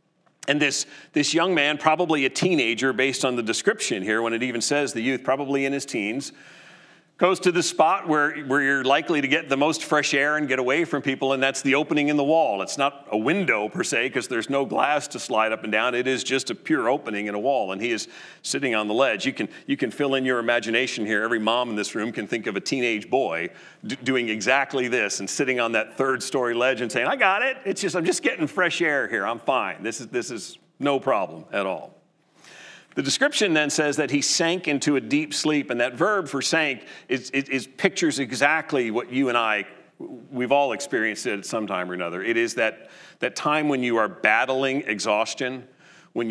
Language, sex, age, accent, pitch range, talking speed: English, male, 40-59, American, 120-150 Hz, 230 wpm